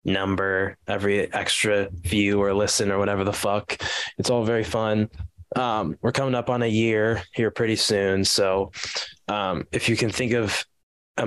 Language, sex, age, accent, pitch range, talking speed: English, male, 20-39, American, 95-110 Hz, 170 wpm